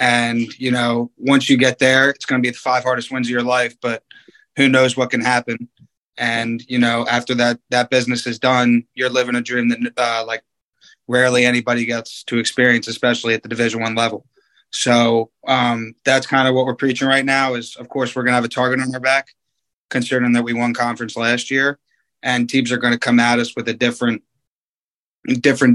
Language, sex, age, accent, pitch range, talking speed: English, male, 20-39, American, 120-130 Hz, 215 wpm